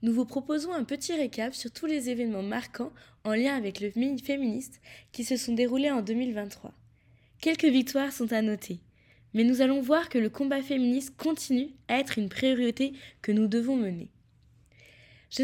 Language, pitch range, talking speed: French, 200-255 Hz, 175 wpm